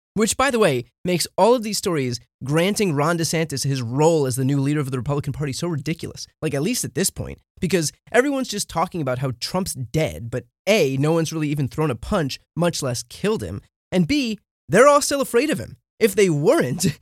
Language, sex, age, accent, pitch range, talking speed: English, male, 20-39, American, 135-205 Hz, 220 wpm